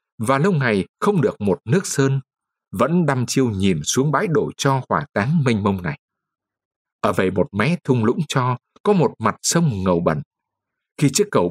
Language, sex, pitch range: Vietnamese, male, 120-175 Hz